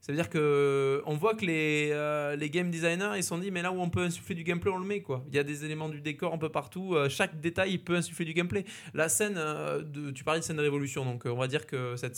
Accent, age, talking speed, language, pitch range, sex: French, 20-39, 295 wpm, French, 130-170 Hz, male